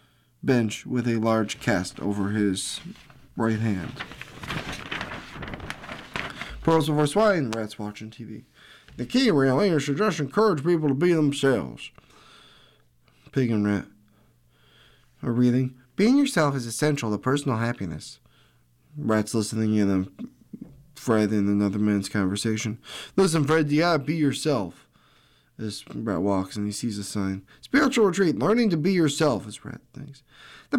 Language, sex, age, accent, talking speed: English, male, 20-39, American, 135 wpm